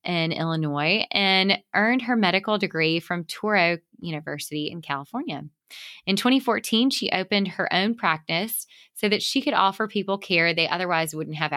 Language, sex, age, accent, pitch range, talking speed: English, female, 20-39, American, 170-215 Hz, 155 wpm